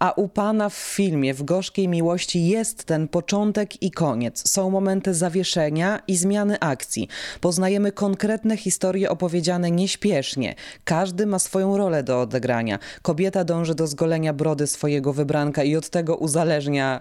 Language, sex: Polish, female